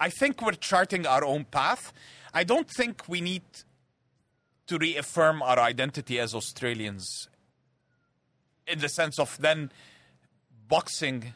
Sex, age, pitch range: male, 40-59, 125-160 Hz